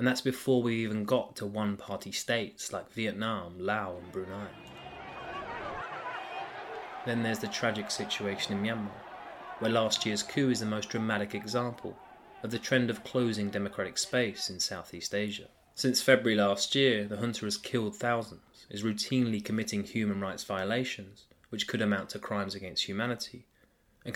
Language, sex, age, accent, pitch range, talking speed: English, male, 20-39, British, 100-120 Hz, 155 wpm